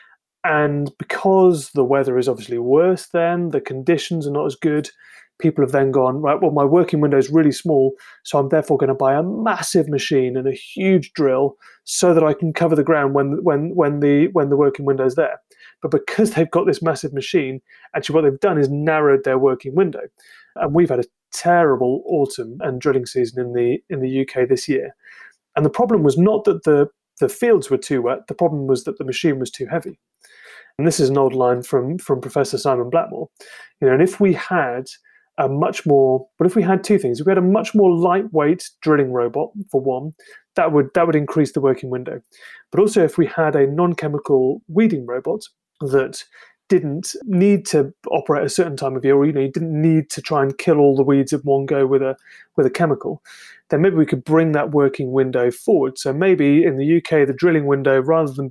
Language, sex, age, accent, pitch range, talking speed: English, male, 30-49, British, 135-175 Hz, 220 wpm